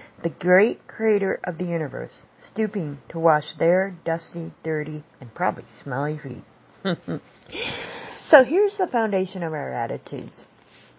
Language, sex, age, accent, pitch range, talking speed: English, female, 50-69, American, 165-220 Hz, 125 wpm